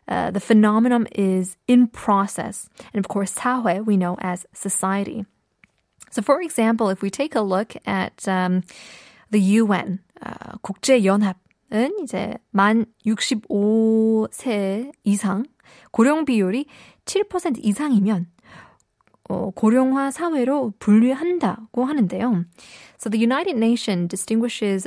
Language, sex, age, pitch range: Korean, female, 20-39, 190-245 Hz